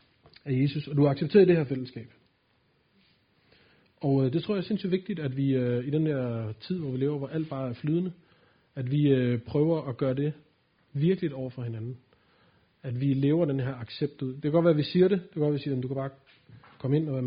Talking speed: 245 wpm